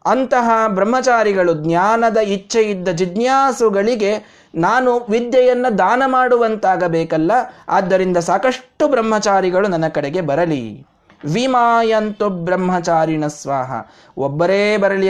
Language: Kannada